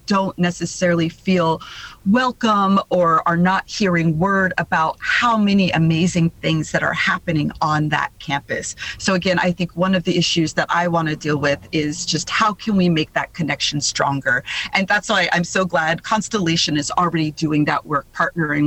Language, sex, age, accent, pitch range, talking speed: English, female, 40-59, American, 155-190 Hz, 180 wpm